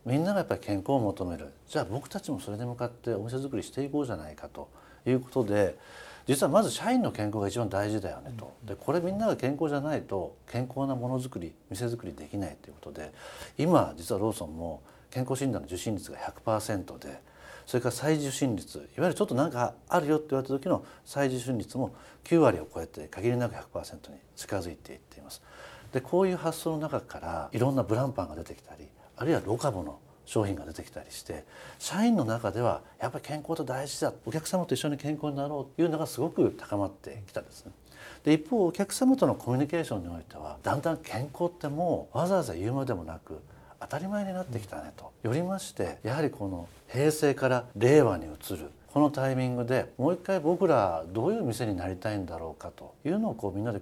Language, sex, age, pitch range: Japanese, male, 50-69, 100-150 Hz